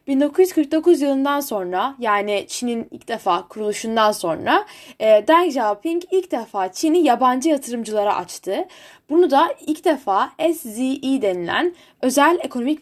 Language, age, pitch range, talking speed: Turkish, 10-29, 215-315 Hz, 115 wpm